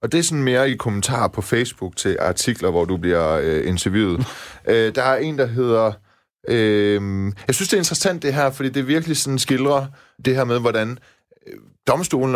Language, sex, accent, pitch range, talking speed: Danish, male, native, 95-125 Hz, 195 wpm